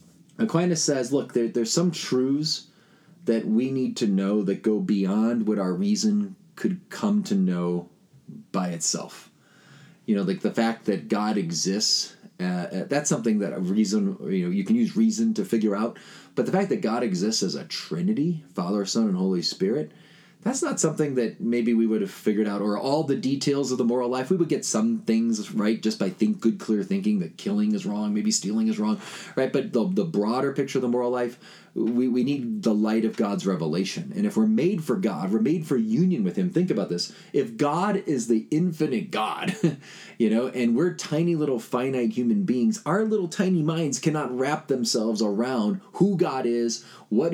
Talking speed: 200 wpm